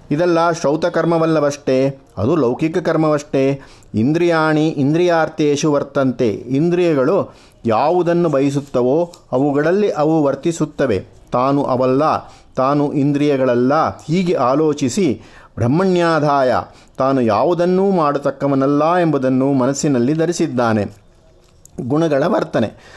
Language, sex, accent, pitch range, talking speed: Kannada, male, native, 130-160 Hz, 75 wpm